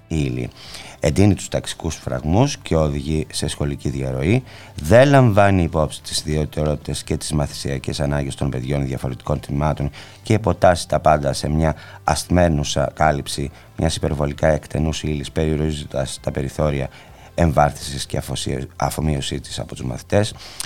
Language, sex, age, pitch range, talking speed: Greek, male, 30-49, 70-90 Hz, 130 wpm